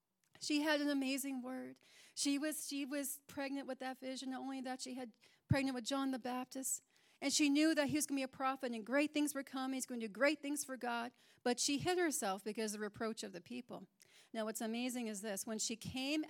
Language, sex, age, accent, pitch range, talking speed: English, female, 40-59, American, 225-290 Hz, 240 wpm